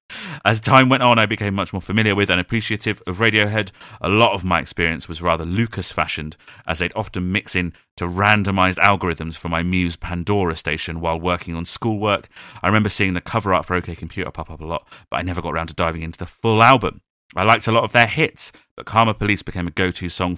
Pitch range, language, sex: 85-105 Hz, English, male